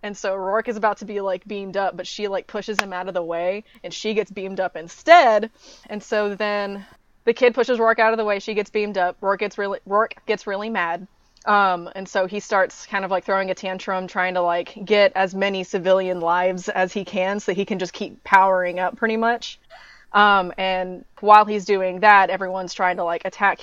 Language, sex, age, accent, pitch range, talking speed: English, female, 20-39, American, 190-230 Hz, 225 wpm